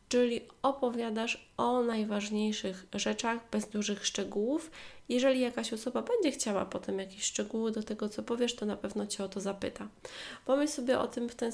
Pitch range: 195-235 Hz